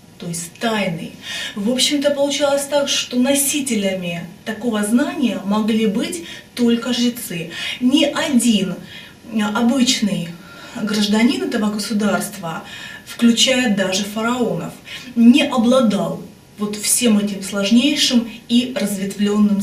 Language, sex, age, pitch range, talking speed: Russian, female, 20-39, 200-240 Hz, 100 wpm